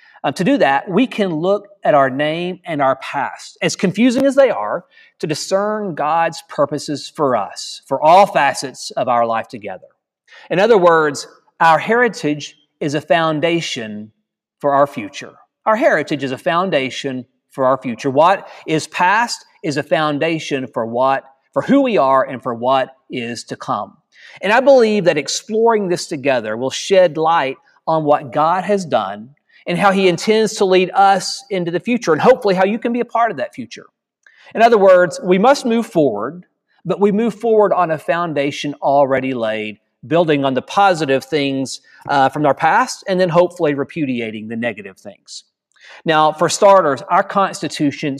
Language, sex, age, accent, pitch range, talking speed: English, male, 40-59, American, 135-200 Hz, 175 wpm